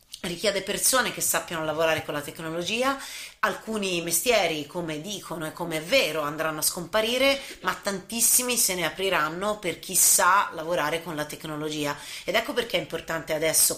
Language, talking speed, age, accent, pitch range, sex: Italian, 160 wpm, 30-49, native, 160-220 Hz, female